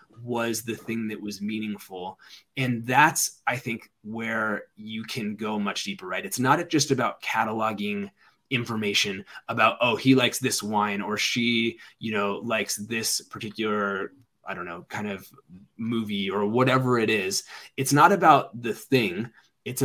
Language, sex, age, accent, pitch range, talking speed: English, male, 20-39, American, 110-135 Hz, 155 wpm